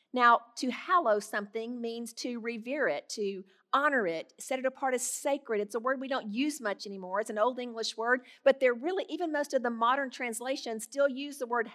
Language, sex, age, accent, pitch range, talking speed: English, female, 50-69, American, 220-275 Hz, 215 wpm